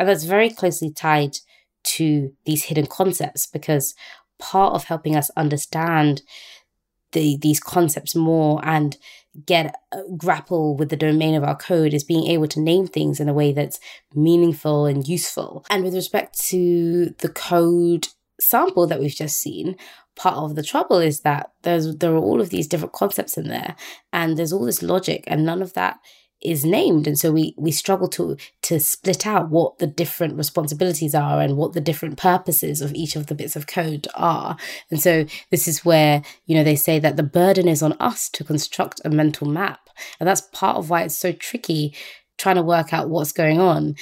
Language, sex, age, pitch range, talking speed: English, female, 20-39, 150-175 Hz, 195 wpm